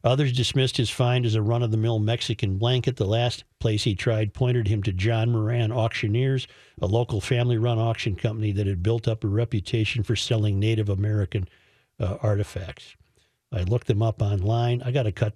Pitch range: 105-120 Hz